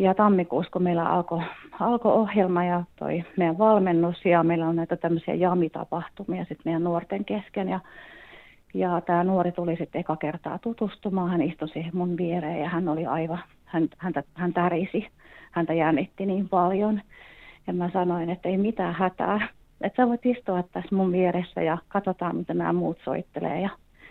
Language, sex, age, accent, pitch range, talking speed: Finnish, female, 30-49, native, 175-205 Hz, 160 wpm